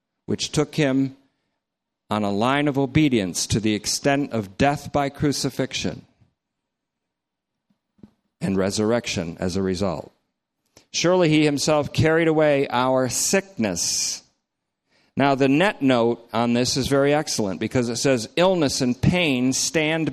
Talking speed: 130 wpm